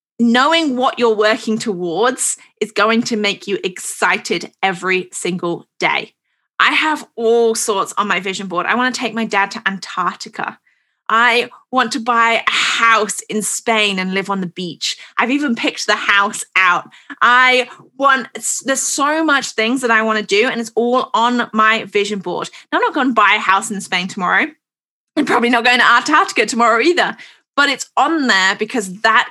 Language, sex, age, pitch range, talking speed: English, female, 20-39, 210-250 Hz, 190 wpm